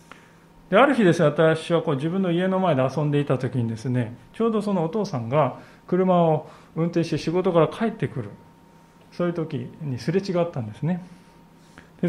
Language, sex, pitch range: Japanese, male, 130-180 Hz